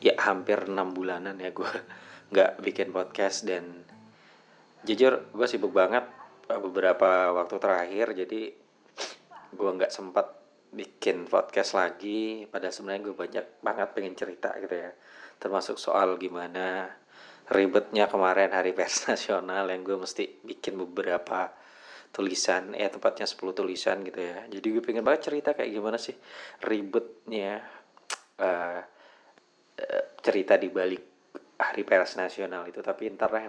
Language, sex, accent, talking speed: Indonesian, male, native, 130 wpm